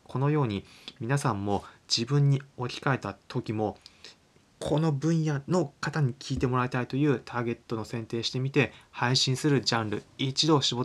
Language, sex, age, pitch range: Japanese, male, 20-39, 110-145 Hz